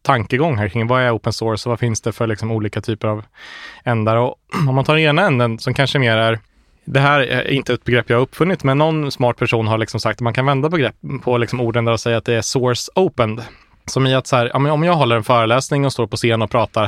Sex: male